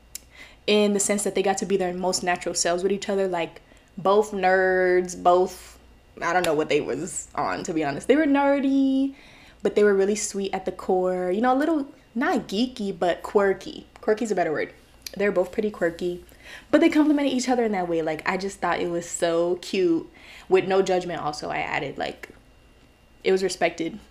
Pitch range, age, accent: 180-235 Hz, 20-39, American